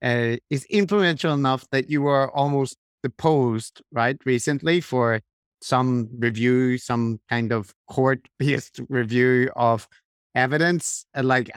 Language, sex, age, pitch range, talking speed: English, male, 50-69, 120-145 Hz, 115 wpm